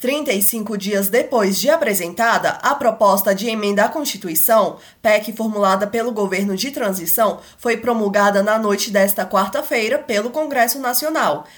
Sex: female